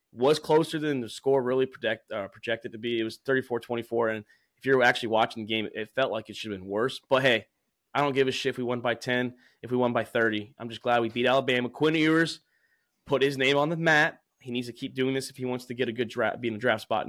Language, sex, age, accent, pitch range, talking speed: English, male, 20-39, American, 115-135 Hz, 280 wpm